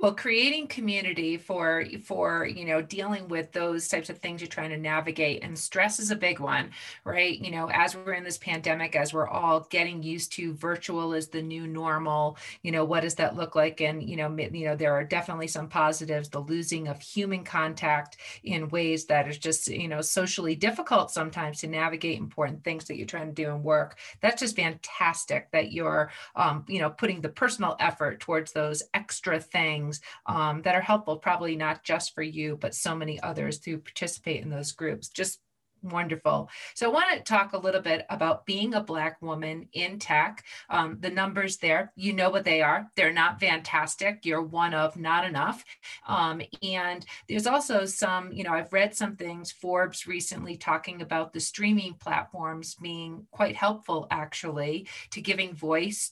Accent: American